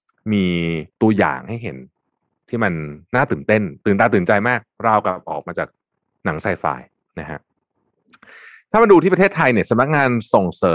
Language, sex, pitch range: Thai, male, 95-125 Hz